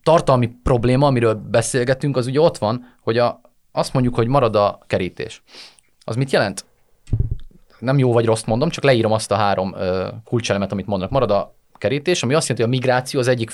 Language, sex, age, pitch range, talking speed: Hungarian, male, 30-49, 115-150 Hz, 190 wpm